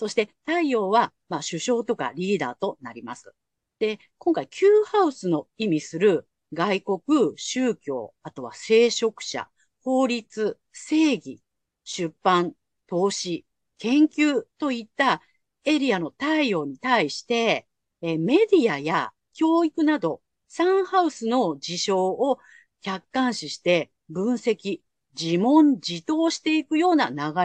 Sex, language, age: female, Japanese, 50-69